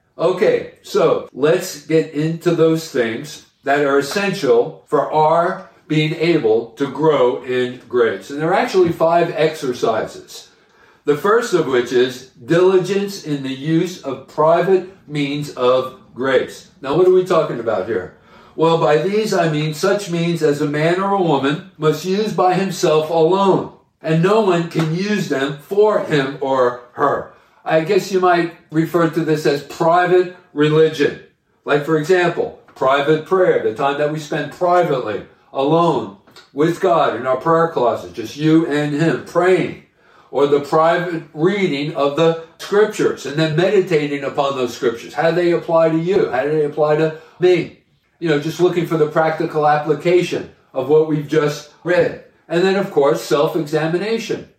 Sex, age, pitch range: male, 50-69, 150-180 Hz